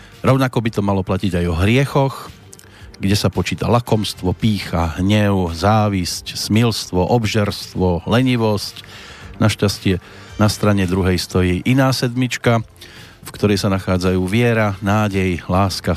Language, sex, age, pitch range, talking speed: Slovak, male, 40-59, 90-115 Hz, 120 wpm